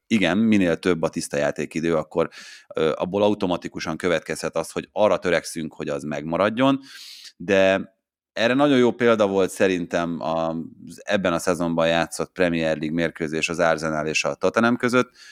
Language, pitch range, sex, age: Hungarian, 85-110 Hz, male, 30-49